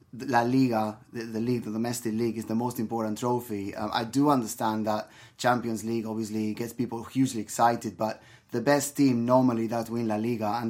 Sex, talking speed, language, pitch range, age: male, 195 wpm, English, 110-125 Hz, 20-39